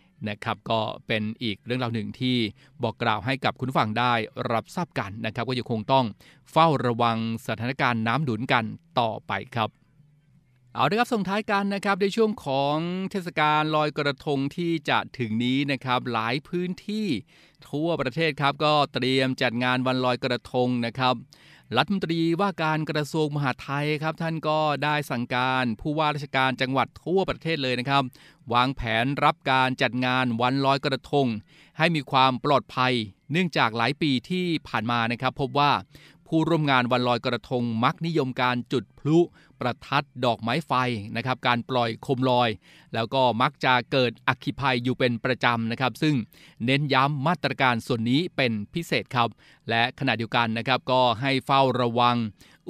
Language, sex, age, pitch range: Thai, male, 20-39, 125-150 Hz